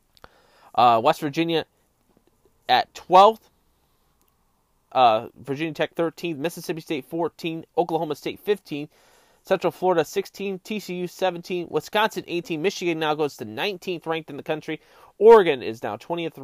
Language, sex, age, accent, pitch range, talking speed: English, male, 20-39, American, 145-175 Hz, 130 wpm